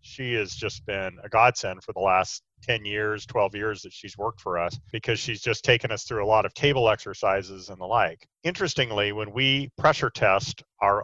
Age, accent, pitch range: 40-59, American, 110-125 Hz